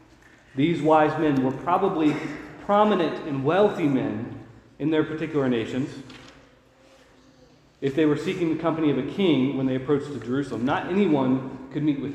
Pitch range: 130-175 Hz